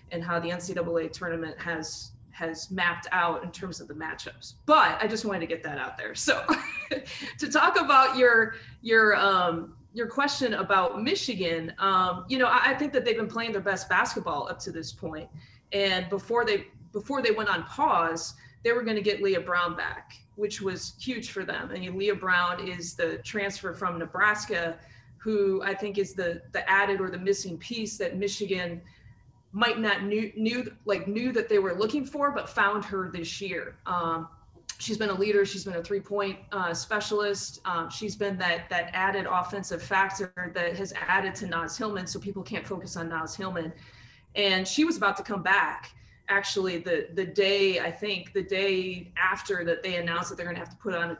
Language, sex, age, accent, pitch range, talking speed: English, female, 20-39, American, 170-205 Hz, 200 wpm